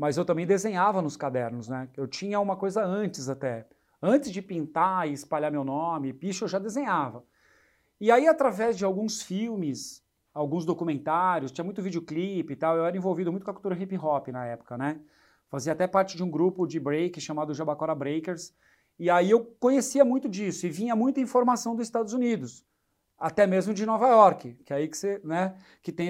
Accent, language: Brazilian, Portuguese